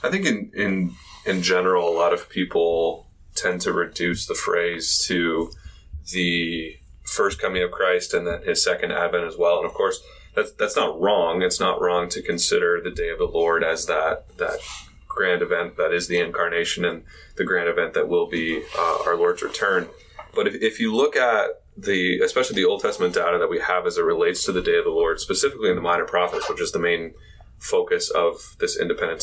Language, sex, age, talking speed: English, male, 20-39, 210 wpm